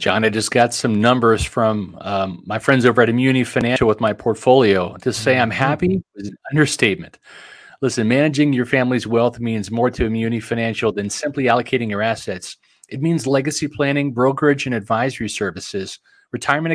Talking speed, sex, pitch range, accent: 170 wpm, male, 115-145 Hz, American